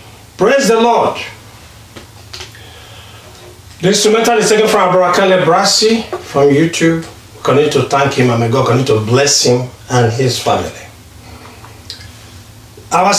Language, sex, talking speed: English, male, 125 wpm